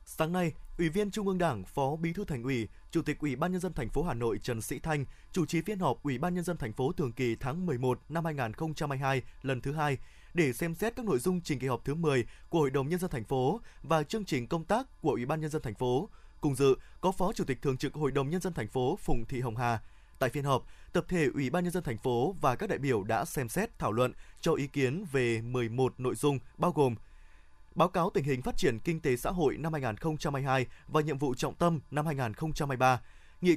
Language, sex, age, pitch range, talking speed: Vietnamese, male, 20-39, 130-170 Hz, 250 wpm